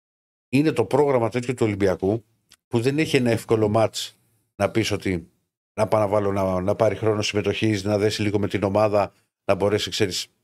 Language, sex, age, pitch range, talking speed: Greek, male, 50-69, 95-120 Hz, 190 wpm